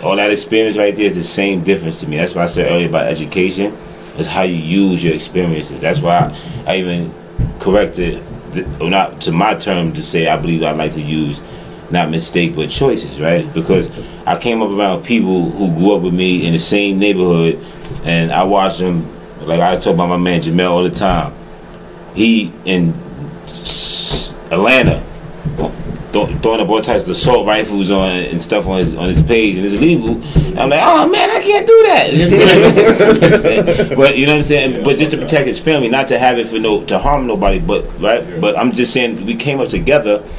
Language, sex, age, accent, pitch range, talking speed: English, male, 30-49, American, 85-115 Hz, 205 wpm